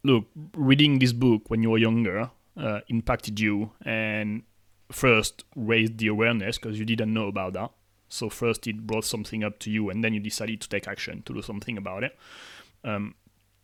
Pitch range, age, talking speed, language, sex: 110-135 Hz, 30-49, 190 wpm, English, male